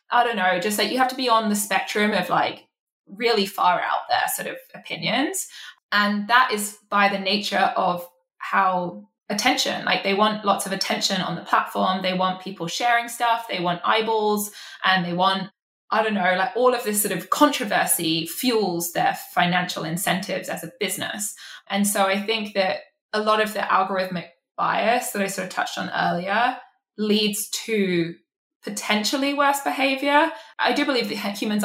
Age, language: 20-39, English